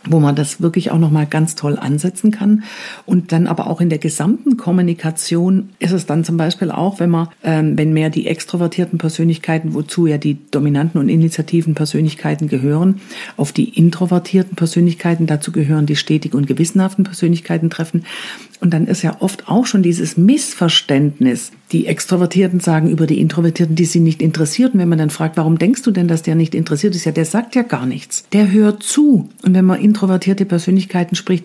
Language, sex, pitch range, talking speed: German, female, 160-195 Hz, 190 wpm